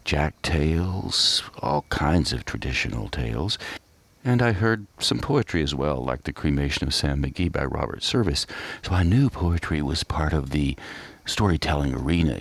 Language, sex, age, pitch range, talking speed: English, male, 60-79, 70-100 Hz, 160 wpm